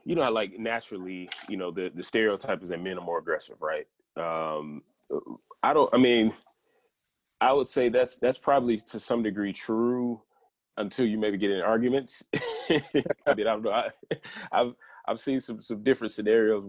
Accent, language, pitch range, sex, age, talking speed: American, English, 95-120 Hz, male, 20-39, 175 wpm